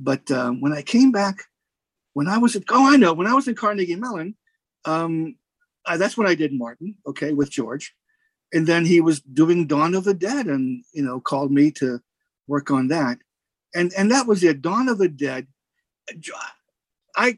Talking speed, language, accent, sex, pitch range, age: 195 wpm, English, American, male, 140-195 Hz, 50-69